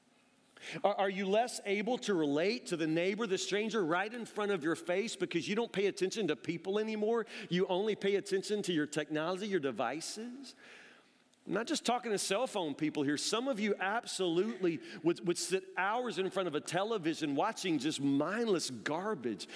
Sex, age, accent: male, 40-59, American